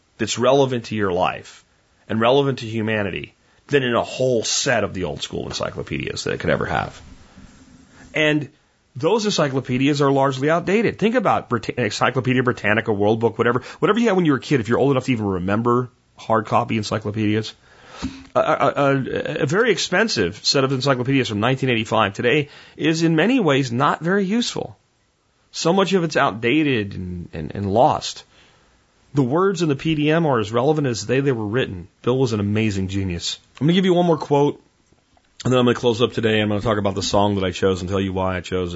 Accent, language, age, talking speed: American, English, 30-49, 200 wpm